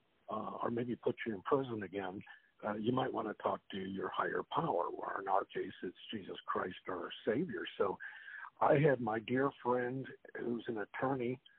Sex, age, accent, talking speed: male, 60-79, American, 185 wpm